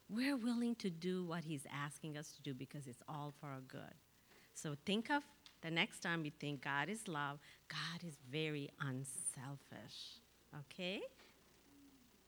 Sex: female